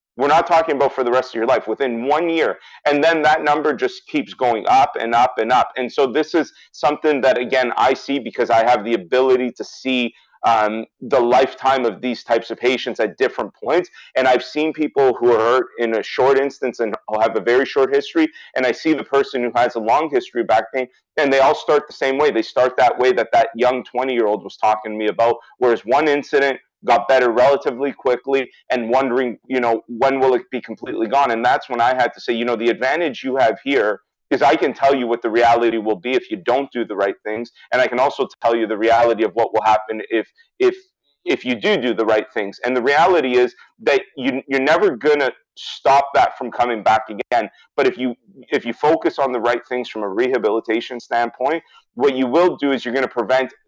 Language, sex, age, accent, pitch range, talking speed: English, male, 30-49, American, 115-140 Hz, 235 wpm